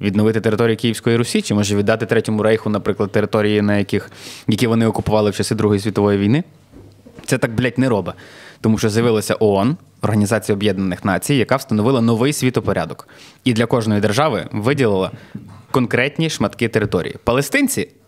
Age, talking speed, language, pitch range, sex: 20-39, 155 wpm, Ukrainian, 105-130 Hz, male